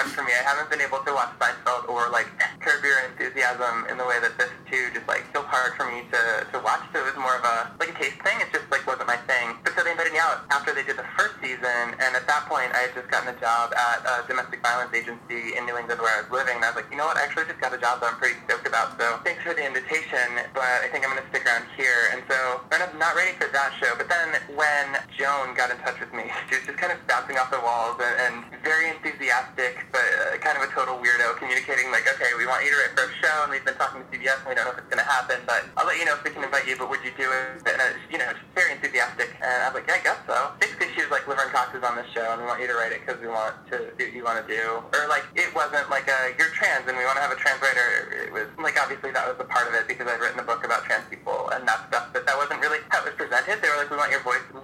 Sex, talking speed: male, 310 wpm